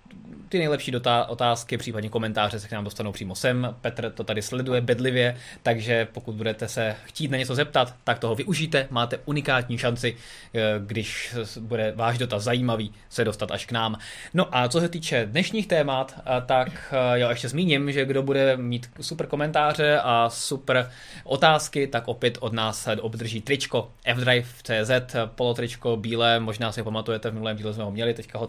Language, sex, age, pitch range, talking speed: Czech, male, 20-39, 115-140 Hz, 170 wpm